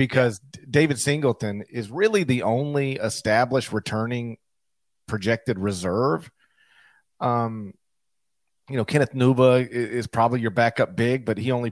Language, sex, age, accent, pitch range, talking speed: English, male, 40-59, American, 110-135 Hz, 130 wpm